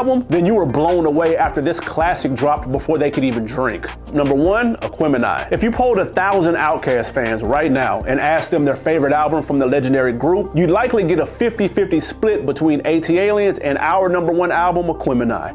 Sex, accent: male, American